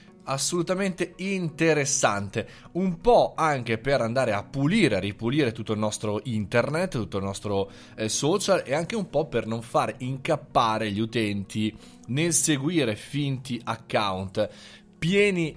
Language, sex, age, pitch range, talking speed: Italian, male, 20-39, 110-145 Hz, 135 wpm